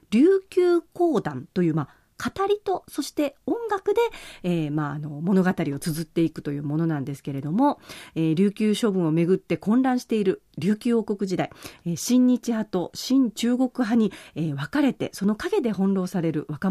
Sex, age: female, 40-59